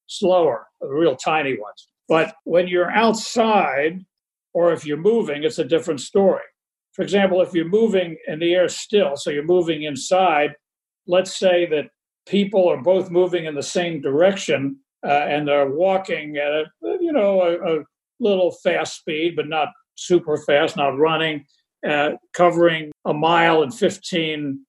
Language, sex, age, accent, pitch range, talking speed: English, male, 60-79, American, 155-200 Hz, 155 wpm